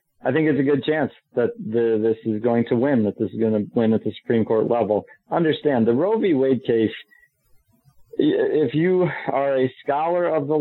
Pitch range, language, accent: 105-125 Hz, English, American